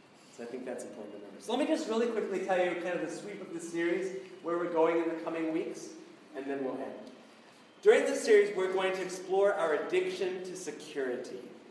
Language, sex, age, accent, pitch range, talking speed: English, male, 30-49, American, 145-200 Hz, 210 wpm